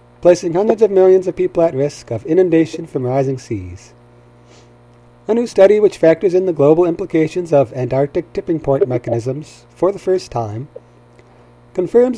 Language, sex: English, male